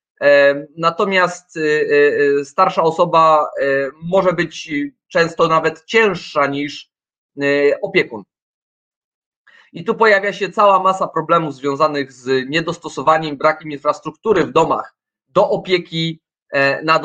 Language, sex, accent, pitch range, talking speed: Polish, male, native, 140-185 Hz, 95 wpm